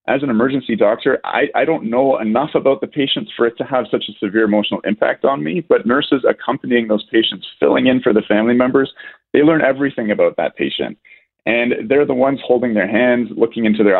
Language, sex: English, male